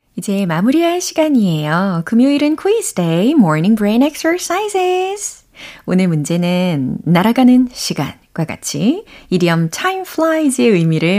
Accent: native